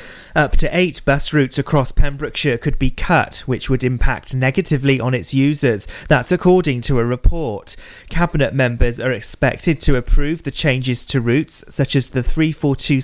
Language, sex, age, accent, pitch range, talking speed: English, male, 30-49, British, 125-150 Hz, 165 wpm